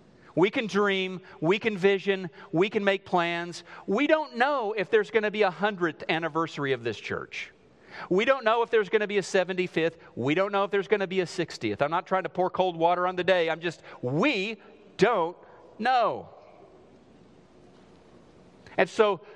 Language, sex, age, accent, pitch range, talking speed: English, male, 40-59, American, 135-195 Hz, 190 wpm